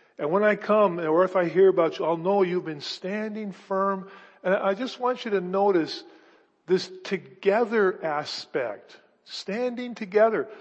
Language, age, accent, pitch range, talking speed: English, 50-69, American, 175-215 Hz, 160 wpm